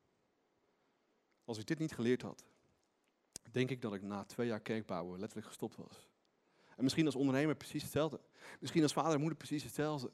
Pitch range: 130-170 Hz